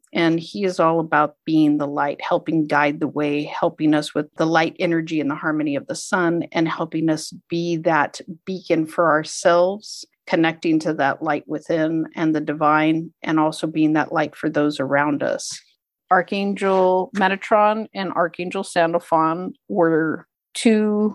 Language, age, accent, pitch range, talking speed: English, 50-69, American, 150-175 Hz, 160 wpm